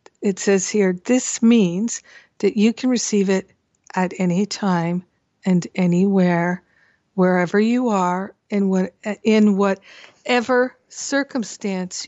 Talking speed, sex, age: 110 wpm, female, 60-79